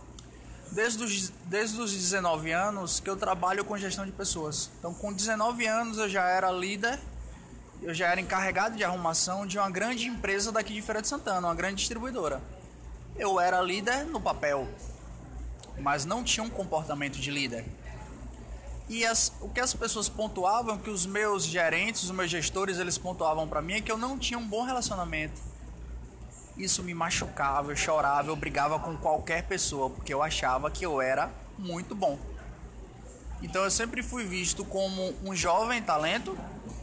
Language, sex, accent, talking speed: Portuguese, male, Brazilian, 170 wpm